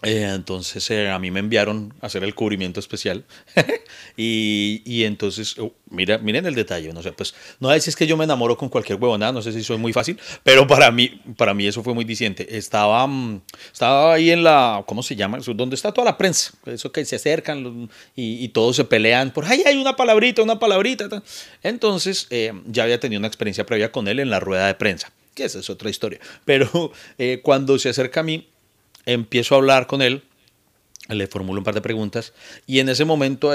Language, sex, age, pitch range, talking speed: Spanish, male, 30-49, 105-135 Hz, 215 wpm